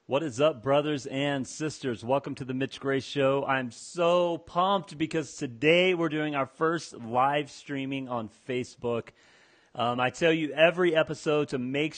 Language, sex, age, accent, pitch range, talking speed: English, male, 40-59, American, 120-155 Hz, 165 wpm